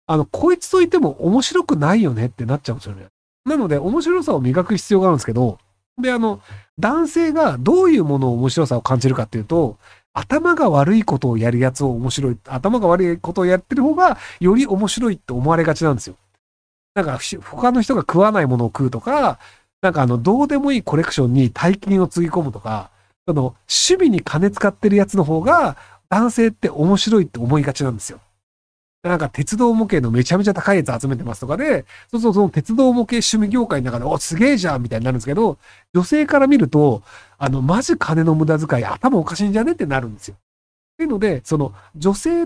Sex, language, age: male, Japanese, 40-59